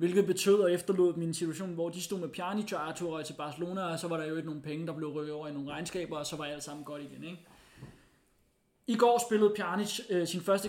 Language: Danish